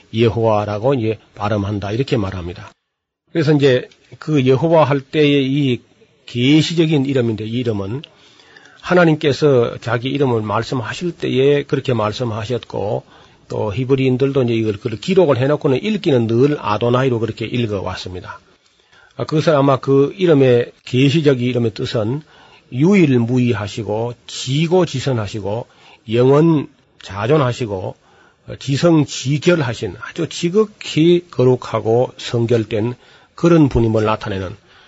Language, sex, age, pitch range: Korean, male, 40-59, 115-150 Hz